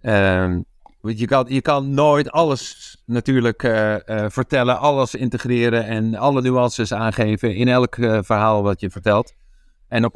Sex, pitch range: male, 100-125 Hz